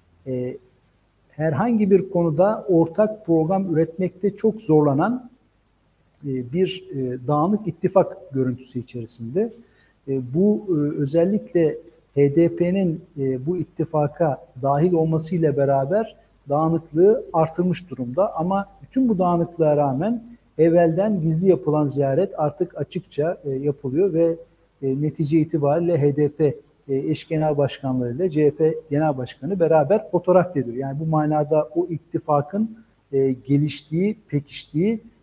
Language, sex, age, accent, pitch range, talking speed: Turkish, male, 50-69, native, 140-185 Hz, 95 wpm